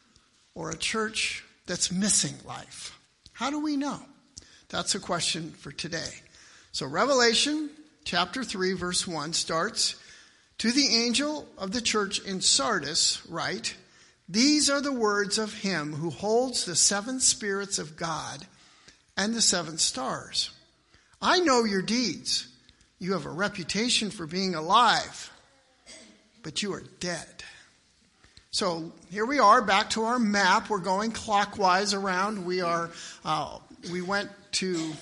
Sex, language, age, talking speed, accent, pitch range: male, English, 50-69, 140 wpm, American, 175-225 Hz